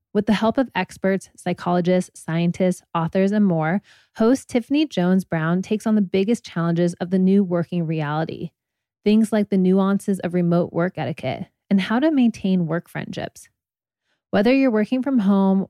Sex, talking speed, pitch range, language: female, 160 wpm, 175-215 Hz, English